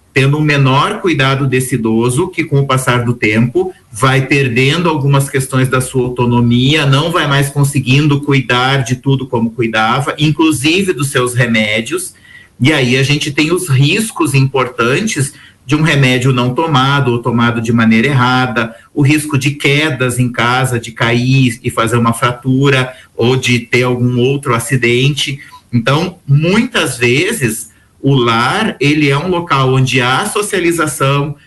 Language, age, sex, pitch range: Portuguese, 40-59, male, 125-145 Hz